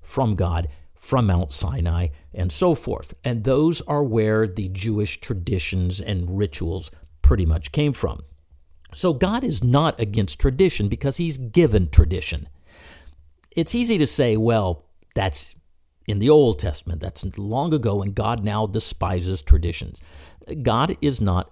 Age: 50-69